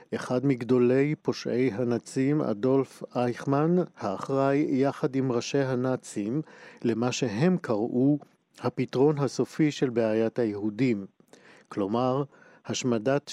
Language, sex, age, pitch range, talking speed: Hebrew, male, 50-69, 115-145 Hz, 95 wpm